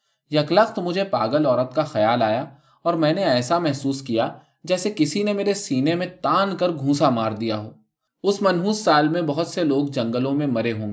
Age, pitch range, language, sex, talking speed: 20-39, 125-170 Hz, Urdu, male, 200 wpm